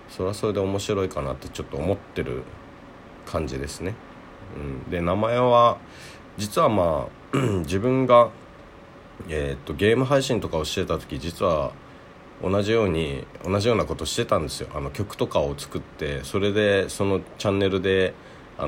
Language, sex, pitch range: Japanese, male, 75-105 Hz